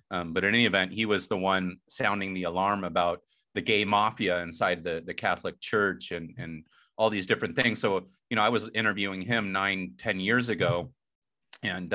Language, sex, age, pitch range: English, male, 30-49, 95-115 Hz